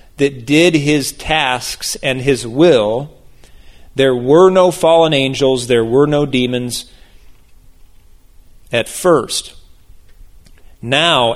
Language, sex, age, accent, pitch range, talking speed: English, male, 40-59, American, 125-170 Hz, 100 wpm